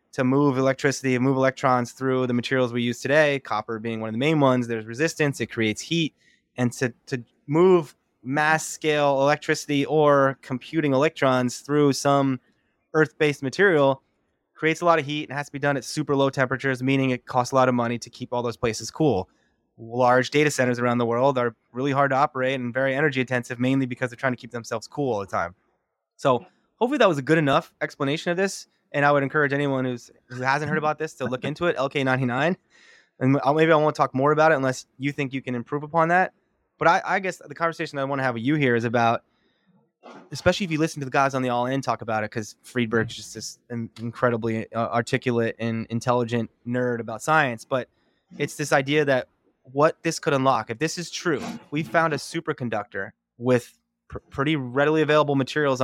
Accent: American